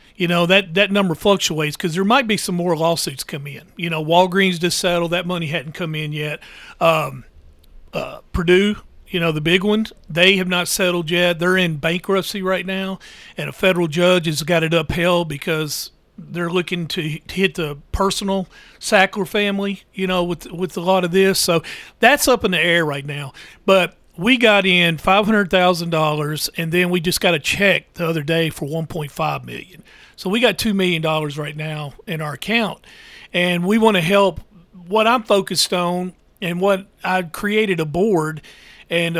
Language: English